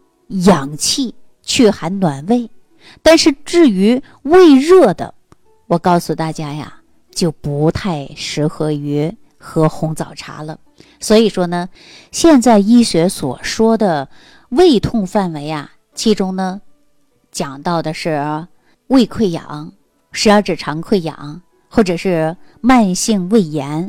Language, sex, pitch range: Chinese, female, 155-240 Hz